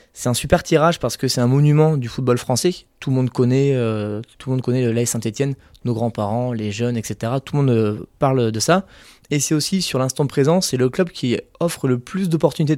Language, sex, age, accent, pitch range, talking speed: French, male, 20-39, French, 115-145 Hz, 225 wpm